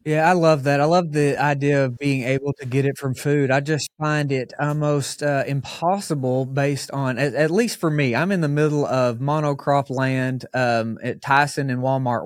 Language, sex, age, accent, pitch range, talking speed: English, male, 30-49, American, 125-150 Hz, 205 wpm